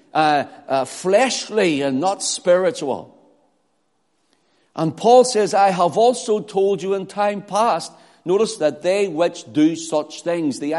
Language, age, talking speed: English, 60-79, 140 wpm